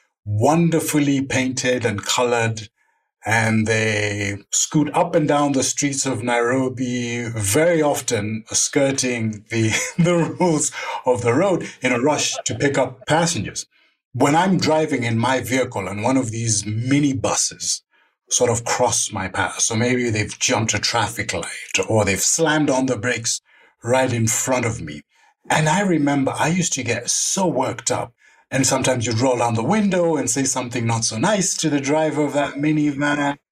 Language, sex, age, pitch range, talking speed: English, male, 60-79, 110-145 Hz, 170 wpm